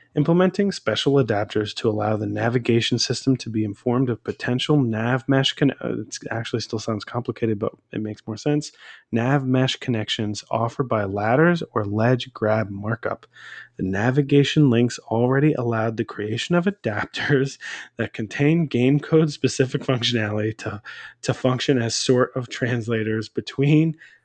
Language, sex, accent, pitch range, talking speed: English, male, American, 115-145 Hz, 145 wpm